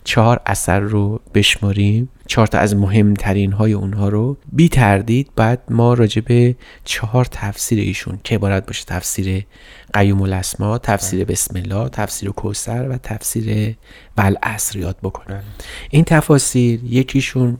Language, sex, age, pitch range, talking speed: Persian, male, 30-49, 100-125 Hz, 130 wpm